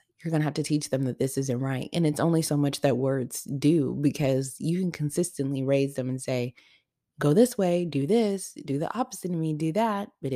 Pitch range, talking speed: 130-155 Hz, 230 wpm